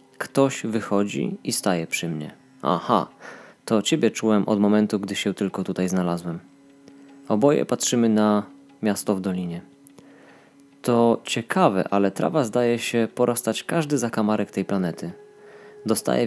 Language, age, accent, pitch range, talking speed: Polish, 20-39, native, 100-135 Hz, 130 wpm